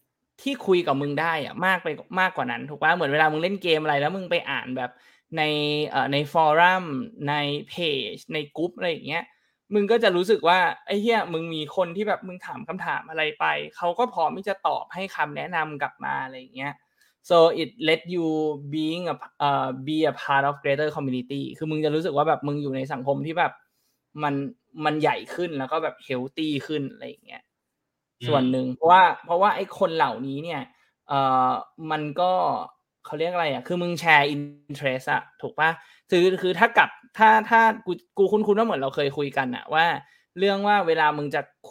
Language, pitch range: Thai, 140-175 Hz